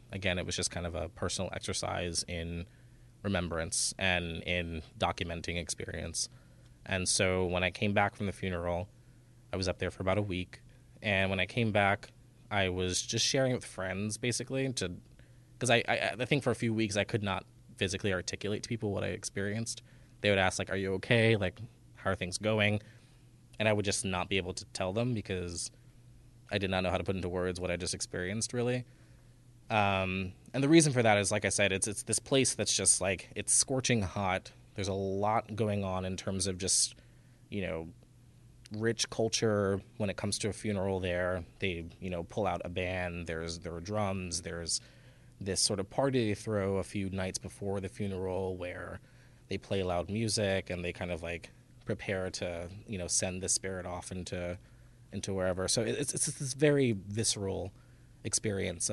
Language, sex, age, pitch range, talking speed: English, male, 20-39, 95-120 Hz, 200 wpm